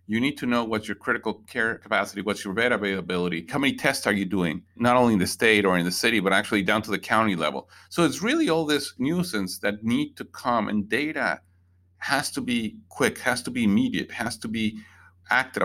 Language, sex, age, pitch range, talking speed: English, male, 40-59, 95-125 Hz, 225 wpm